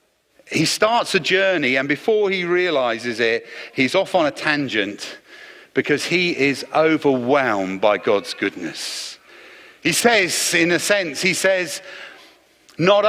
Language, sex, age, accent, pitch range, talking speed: English, male, 50-69, British, 185-280 Hz, 135 wpm